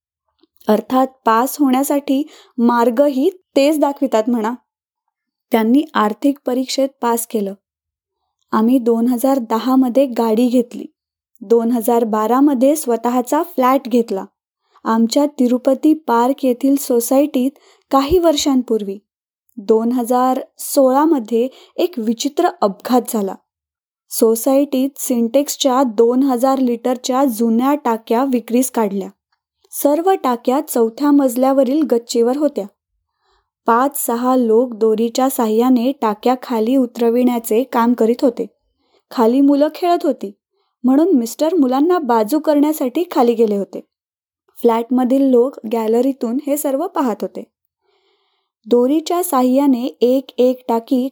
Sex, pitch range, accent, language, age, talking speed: female, 235-280 Hz, native, Marathi, 20-39, 100 wpm